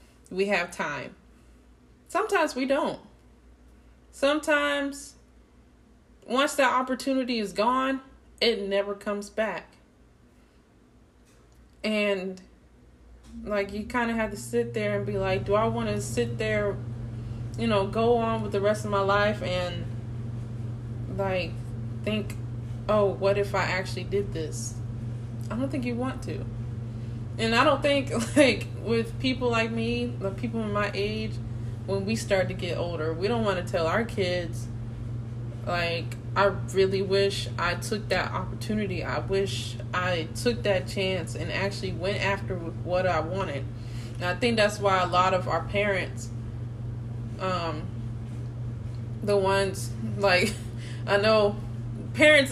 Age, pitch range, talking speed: 20-39, 115-190 Hz, 145 wpm